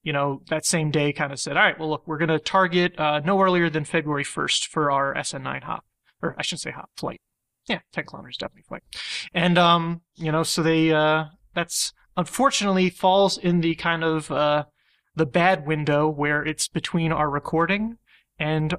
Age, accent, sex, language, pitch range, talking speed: 30-49, American, male, English, 150-170 Hz, 190 wpm